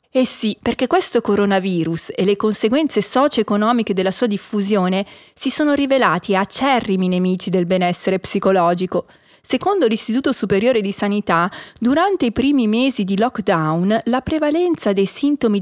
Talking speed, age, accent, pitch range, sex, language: 135 wpm, 40-59, native, 195-260 Hz, female, Italian